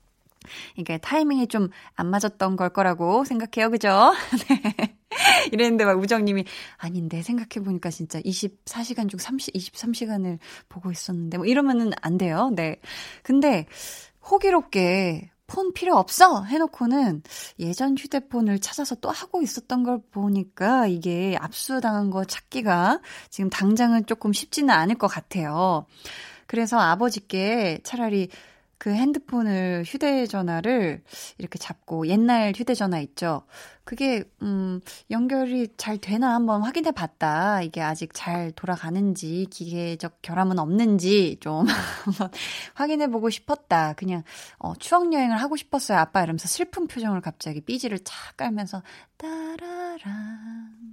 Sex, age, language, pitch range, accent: female, 20-39, Korean, 180-250 Hz, native